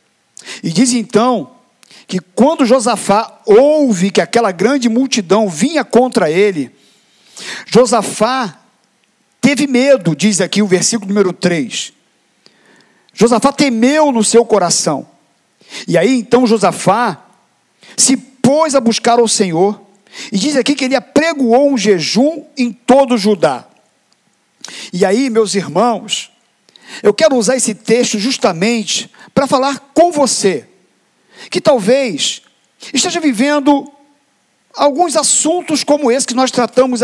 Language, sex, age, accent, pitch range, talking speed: Portuguese, male, 50-69, Brazilian, 225-280 Hz, 120 wpm